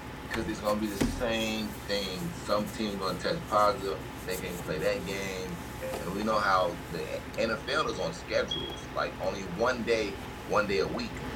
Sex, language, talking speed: male, English, 190 wpm